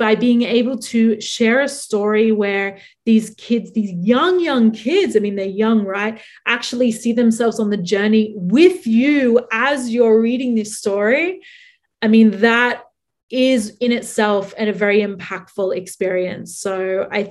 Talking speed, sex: 155 wpm, female